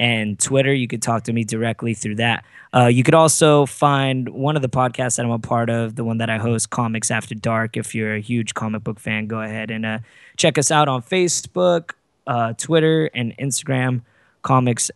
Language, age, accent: English, 20-39, American